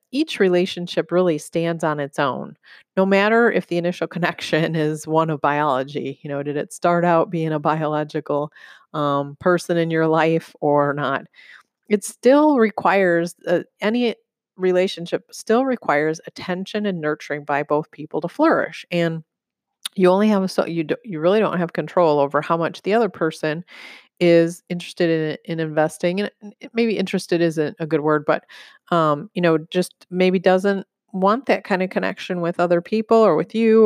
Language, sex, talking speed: English, female, 170 wpm